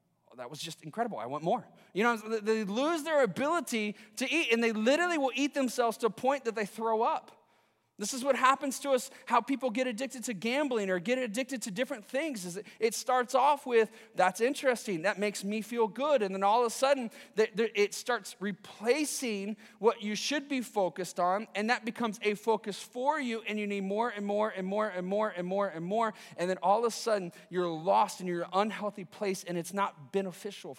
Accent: American